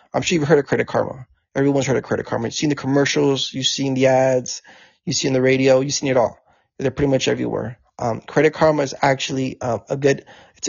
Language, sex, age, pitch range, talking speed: English, male, 20-39, 130-145 Hz, 230 wpm